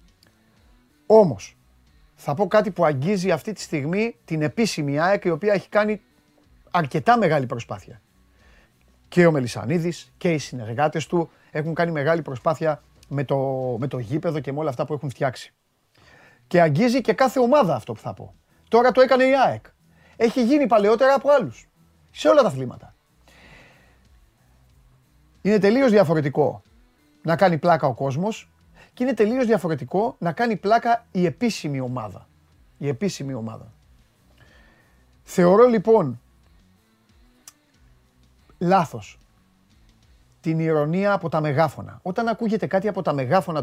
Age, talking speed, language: 30-49, 135 wpm, Greek